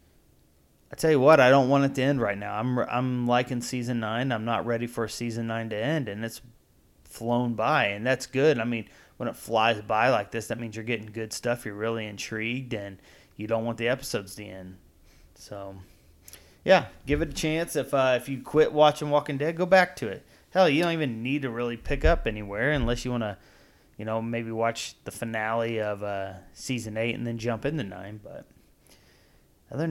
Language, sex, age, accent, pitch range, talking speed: English, male, 30-49, American, 105-130 Hz, 210 wpm